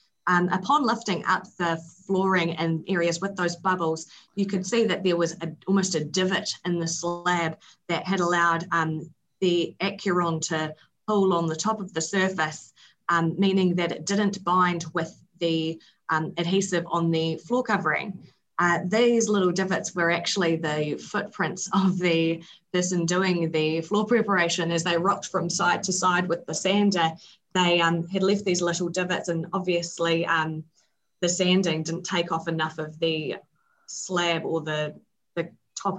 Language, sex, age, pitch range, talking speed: English, female, 20-39, 165-195 Hz, 165 wpm